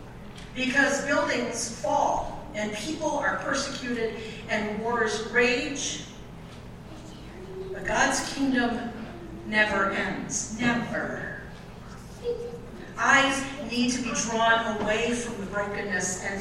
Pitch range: 210-265 Hz